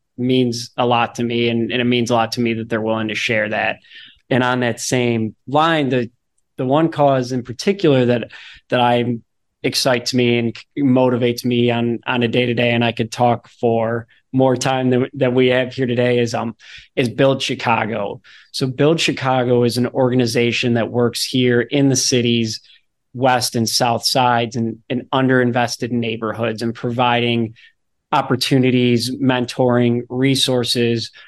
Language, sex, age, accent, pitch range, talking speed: English, male, 20-39, American, 120-130 Hz, 165 wpm